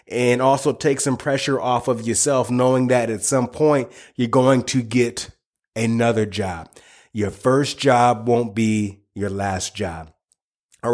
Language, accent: English, American